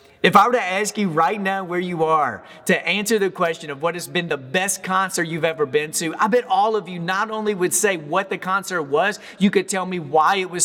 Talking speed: 260 wpm